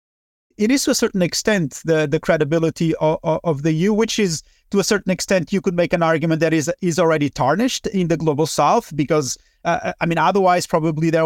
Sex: male